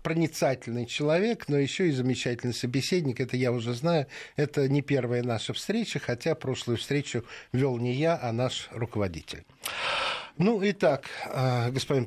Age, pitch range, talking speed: 50-69, 120-165 Hz, 140 wpm